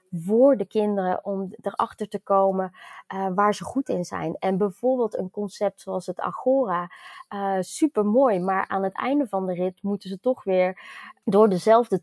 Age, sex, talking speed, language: 20-39, female, 180 wpm, Dutch